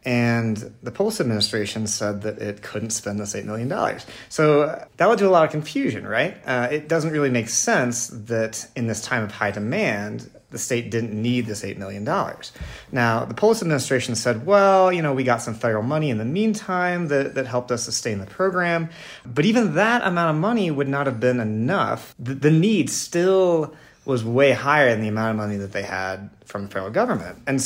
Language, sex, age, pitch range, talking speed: English, male, 30-49, 110-150 Hz, 205 wpm